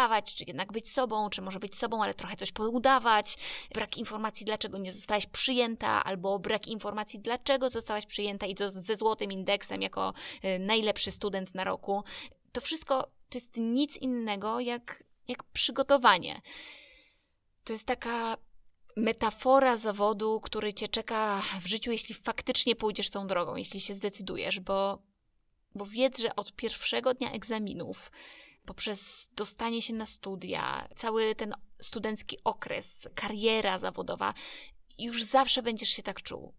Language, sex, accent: Polish, female, native